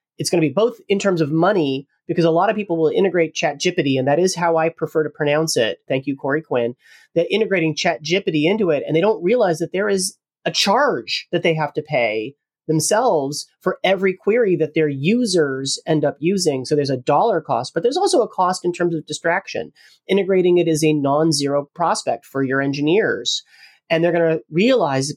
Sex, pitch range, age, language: male, 150-180 Hz, 30-49, English